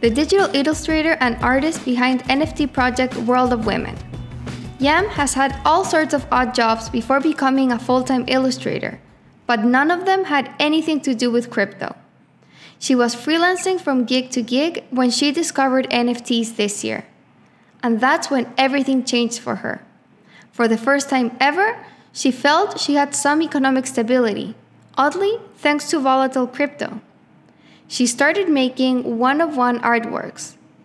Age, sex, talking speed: 10-29, female, 150 wpm